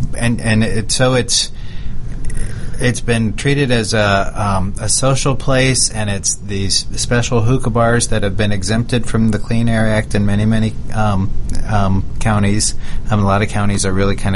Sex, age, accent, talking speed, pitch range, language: male, 40-59, American, 170 wpm, 95-115 Hz, English